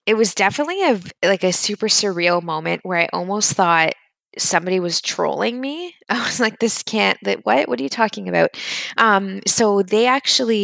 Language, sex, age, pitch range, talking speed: English, female, 20-39, 165-210 Hz, 185 wpm